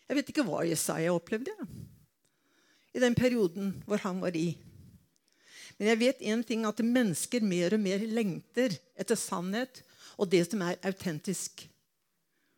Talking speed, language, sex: 160 wpm, English, female